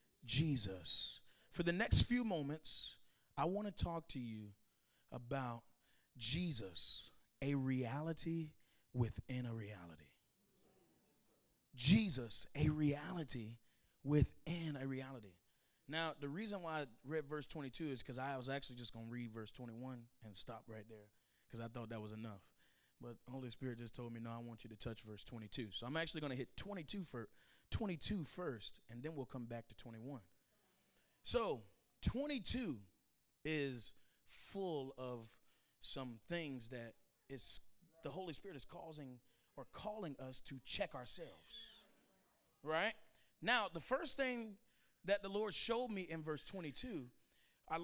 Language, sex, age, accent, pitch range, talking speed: English, male, 30-49, American, 120-165 Hz, 150 wpm